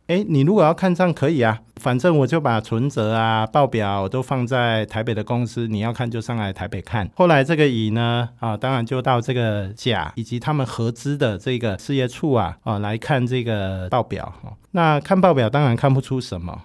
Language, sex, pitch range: Chinese, male, 105-140 Hz